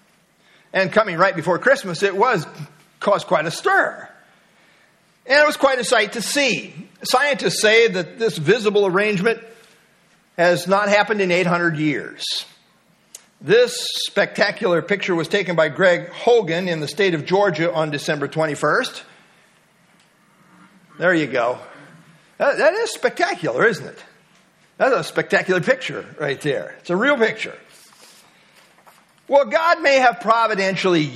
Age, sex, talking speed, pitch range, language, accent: 50-69, male, 135 wpm, 180-230 Hz, English, American